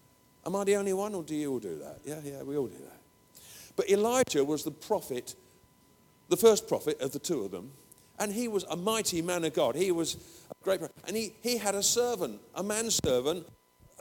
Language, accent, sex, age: English, British, male, 50-69